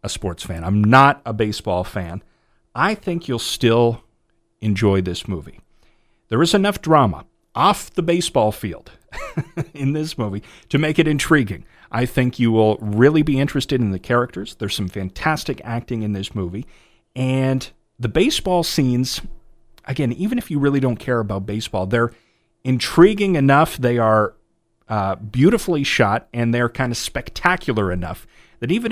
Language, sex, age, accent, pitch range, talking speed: English, male, 40-59, American, 105-140 Hz, 155 wpm